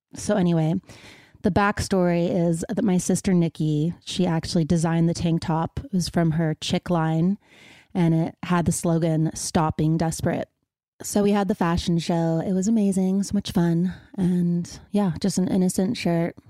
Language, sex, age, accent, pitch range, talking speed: English, female, 30-49, American, 170-190 Hz, 165 wpm